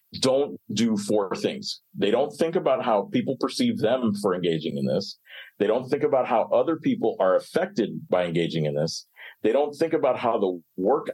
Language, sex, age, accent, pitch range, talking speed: English, male, 40-59, American, 100-145 Hz, 195 wpm